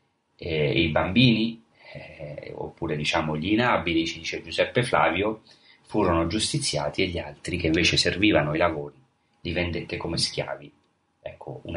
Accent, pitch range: native, 80-105 Hz